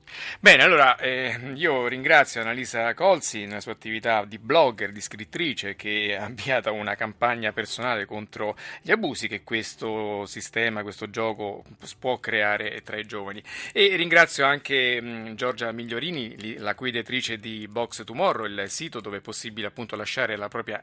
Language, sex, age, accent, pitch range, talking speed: Italian, male, 30-49, native, 110-135 Hz, 145 wpm